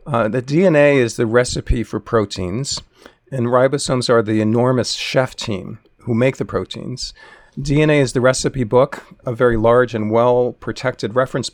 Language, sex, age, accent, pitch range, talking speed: English, male, 50-69, American, 105-125 Hz, 160 wpm